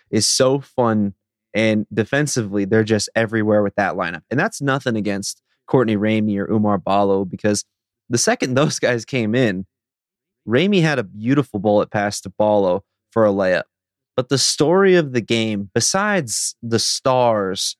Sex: male